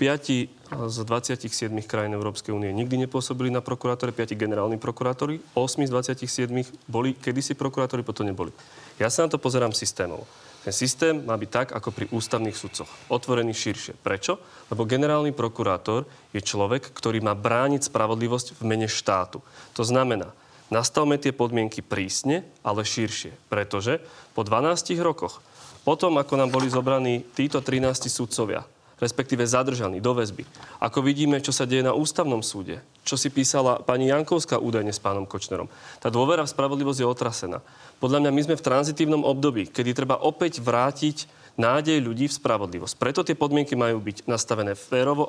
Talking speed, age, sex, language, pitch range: 160 wpm, 30-49, male, Slovak, 115-150 Hz